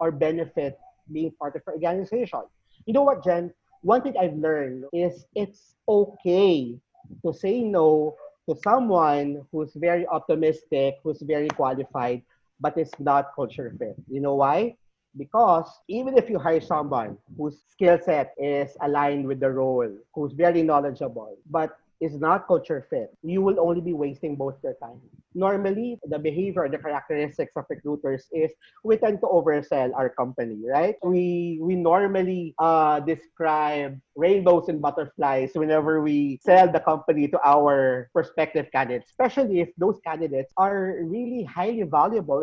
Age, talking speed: 40-59, 150 wpm